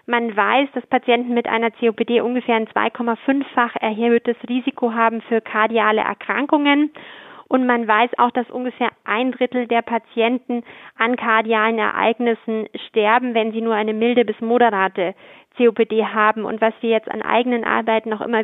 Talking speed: 155 wpm